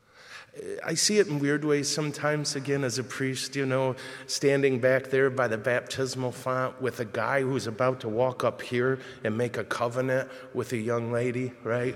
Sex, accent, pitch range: male, American, 110-130 Hz